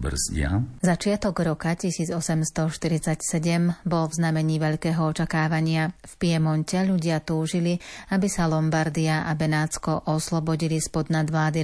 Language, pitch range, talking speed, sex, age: Slovak, 155-165 Hz, 105 wpm, female, 30-49